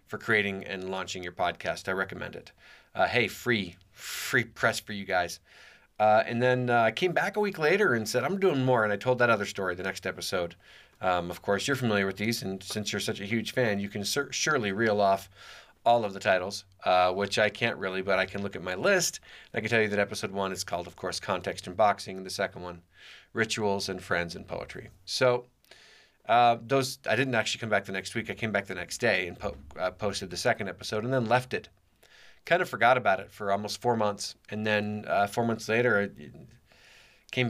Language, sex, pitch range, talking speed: English, male, 95-125 Hz, 230 wpm